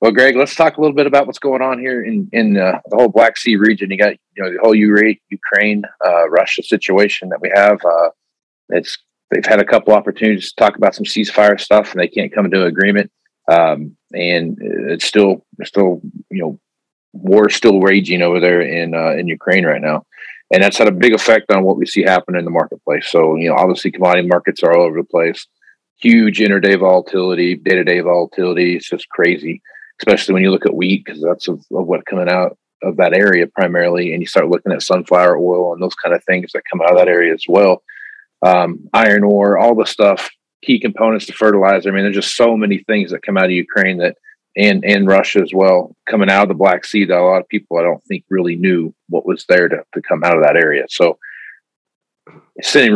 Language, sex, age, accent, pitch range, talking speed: English, male, 40-59, American, 90-105 Hz, 225 wpm